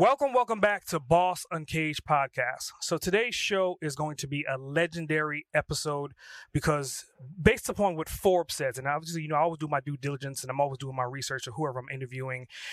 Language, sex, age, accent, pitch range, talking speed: English, male, 30-49, American, 135-160 Hz, 205 wpm